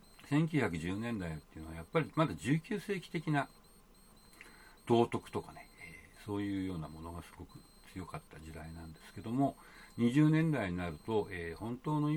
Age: 60-79